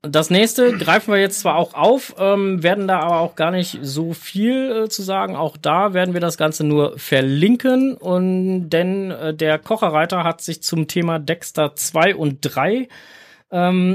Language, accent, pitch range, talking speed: German, German, 150-195 Hz, 180 wpm